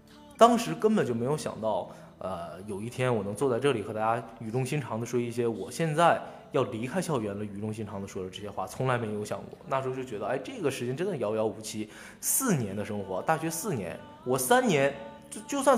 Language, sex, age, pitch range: Japanese, male, 20-39, 105-150 Hz